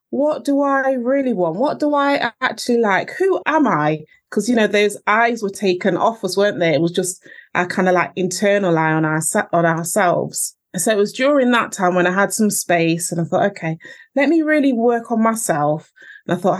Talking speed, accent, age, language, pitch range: 220 wpm, British, 30-49, English, 180-230 Hz